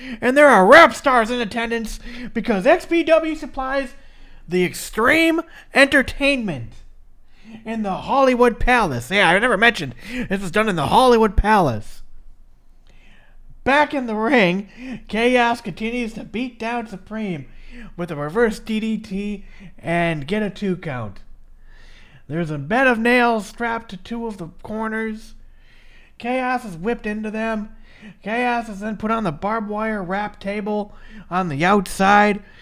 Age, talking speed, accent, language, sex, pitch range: 40-59, 140 wpm, American, English, male, 205-250 Hz